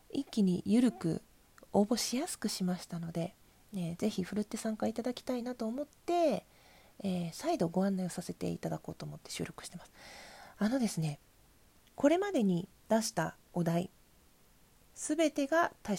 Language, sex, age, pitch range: Japanese, female, 40-59, 190-285 Hz